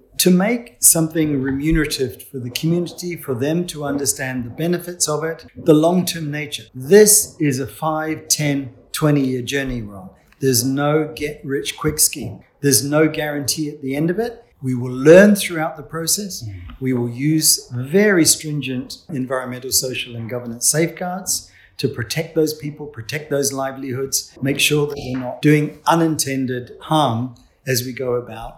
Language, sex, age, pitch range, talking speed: English, male, 50-69, 130-175 Hz, 155 wpm